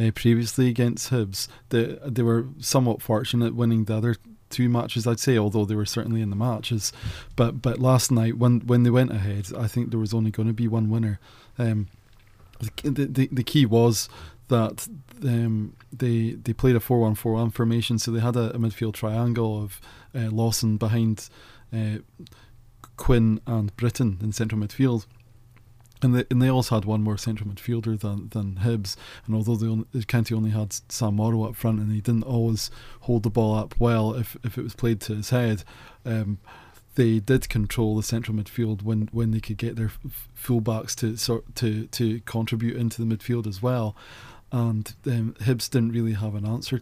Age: 20-39